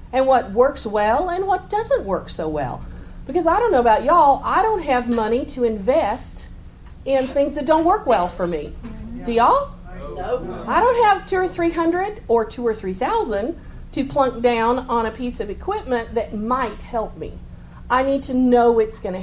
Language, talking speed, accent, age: English, 195 wpm, American, 50-69